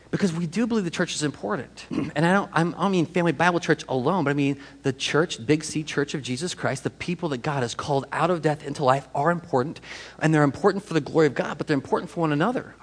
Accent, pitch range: American, 125-165 Hz